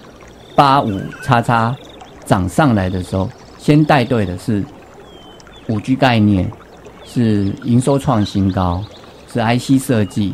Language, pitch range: Chinese, 100-145 Hz